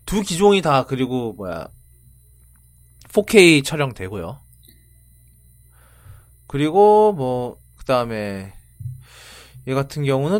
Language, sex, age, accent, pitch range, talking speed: English, male, 20-39, Korean, 110-175 Hz, 80 wpm